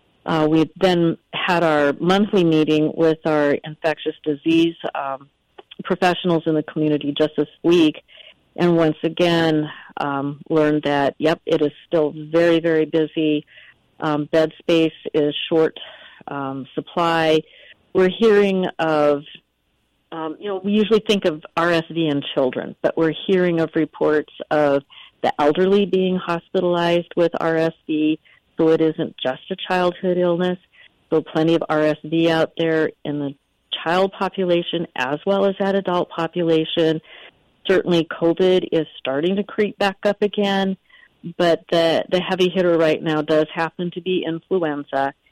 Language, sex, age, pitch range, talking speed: English, female, 50-69, 150-180 Hz, 145 wpm